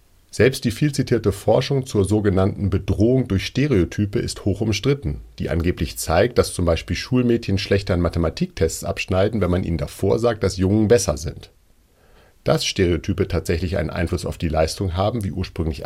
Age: 40-59